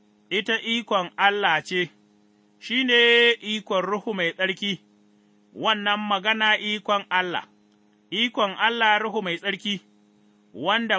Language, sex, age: English, male, 30-49